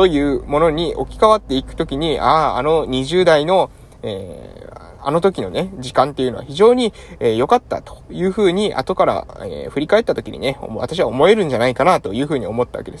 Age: 20-39